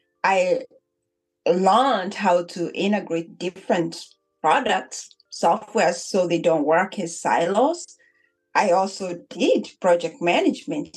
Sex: female